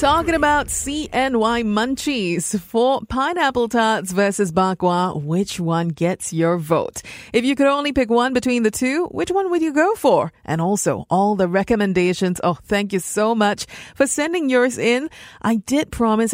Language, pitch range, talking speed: English, 175-240 Hz, 170 wpm